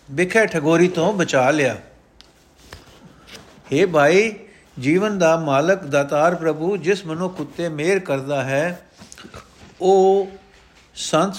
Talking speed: 105 wpm